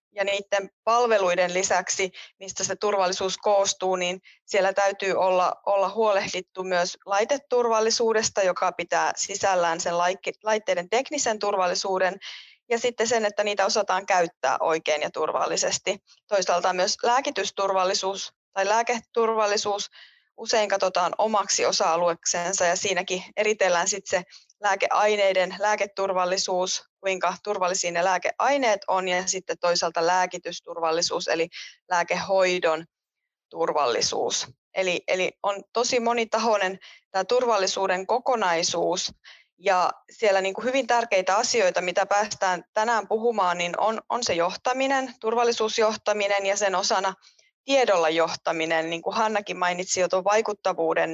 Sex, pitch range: female, 180-215 Hz